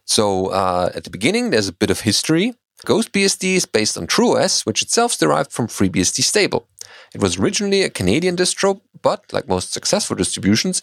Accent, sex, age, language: German, male, 30-49, English